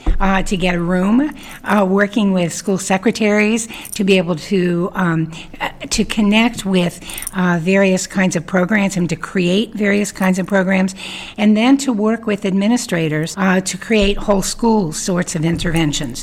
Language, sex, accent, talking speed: English, female, American, 160 wpm